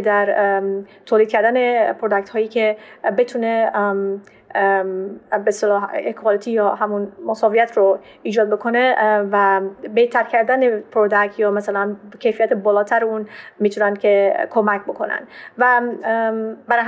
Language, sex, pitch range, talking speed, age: Persian, female, 210-235 Hz, 105 wpm, 30-49